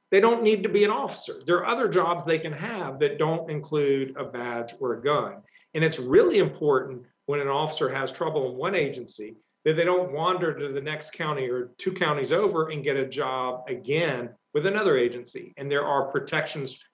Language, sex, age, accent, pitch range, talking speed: English, male, 50-69, American, 130-180 Hz, 205 wpm